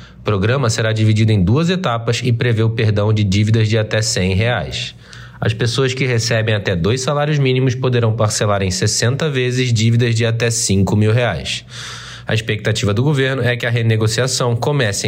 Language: Portuguese